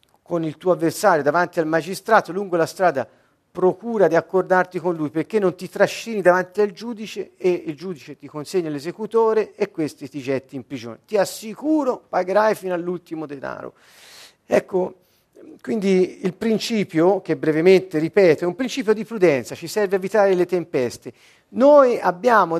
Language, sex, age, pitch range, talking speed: Slovak, male, 50-69, 160-225 Hz, 155 wpm